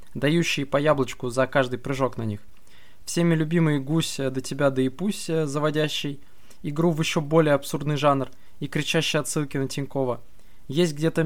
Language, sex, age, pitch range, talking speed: Russian, male, 20-39, 130-160 Hz, 165 wpm